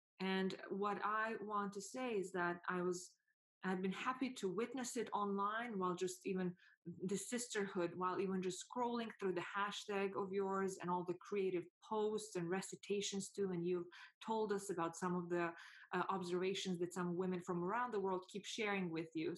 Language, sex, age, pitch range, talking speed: English, female, 20-39, 185-230 Hz, 185 wpm